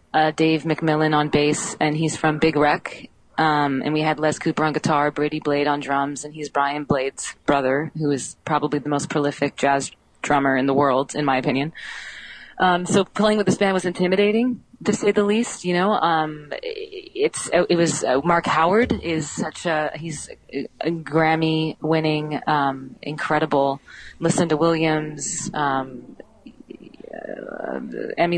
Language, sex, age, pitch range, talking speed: English, female, 30-49, 150-170 Hz, 160 wpm